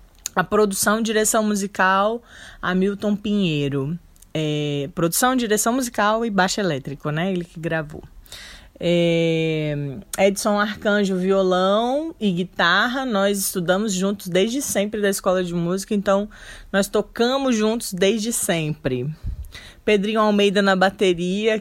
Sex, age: female, 20-39